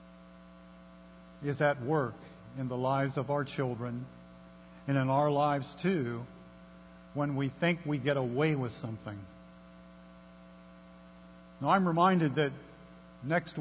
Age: 50-69